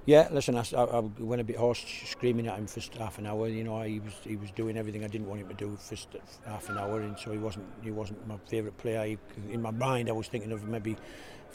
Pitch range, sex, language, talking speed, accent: 105-120 Hz, male, English, 270 wpm, British